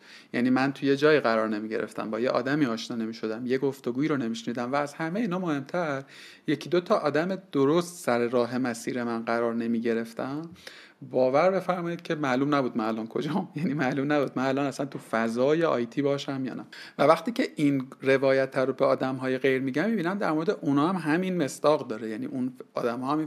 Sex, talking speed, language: male, 195 wpm, Persian